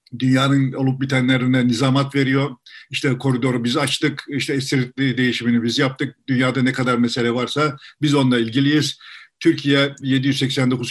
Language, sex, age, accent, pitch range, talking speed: Turkish, male, 50-69, native, 125-145 Hz, 130 wpm